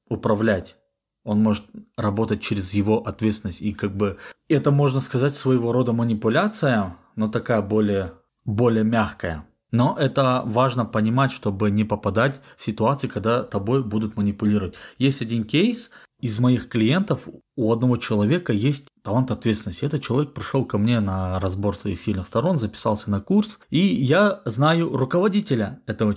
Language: Russian